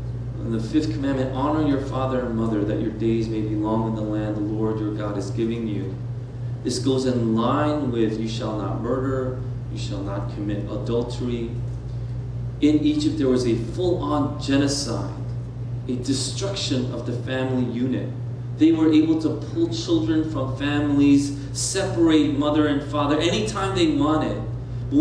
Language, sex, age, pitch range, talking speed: English, male, 30-49, 120-155 Hz, 160 wpm